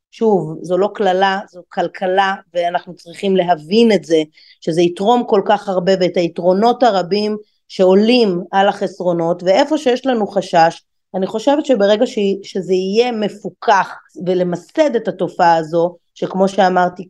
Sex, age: female, 30-49